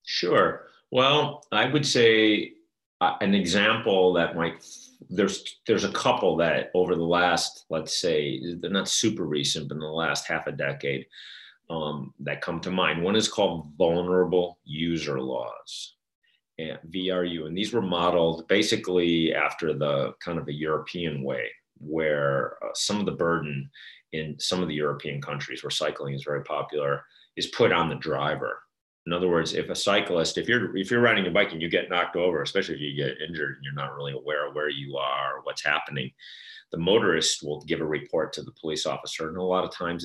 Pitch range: 75-90 Hz